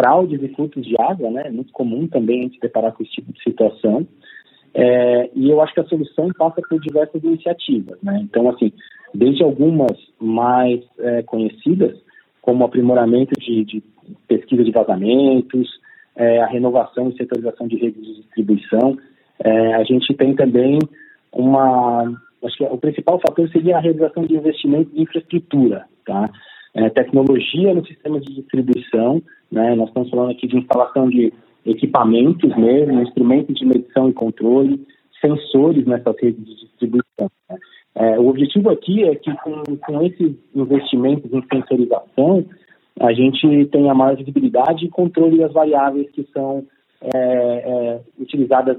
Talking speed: 150 wpm